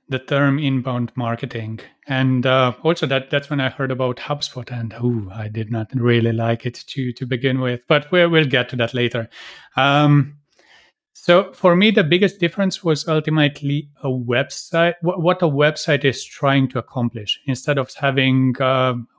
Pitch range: 130-155 Hz